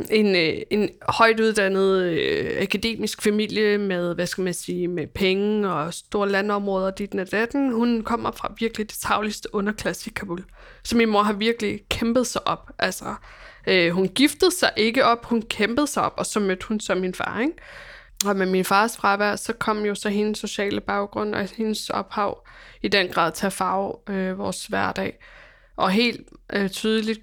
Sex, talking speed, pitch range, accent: female, 180 wpm, 190-220 Hz, native